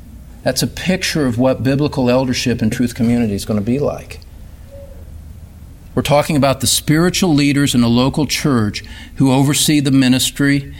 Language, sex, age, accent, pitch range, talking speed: English, male, 50-69, American, 100-145 Hz, 160 wpm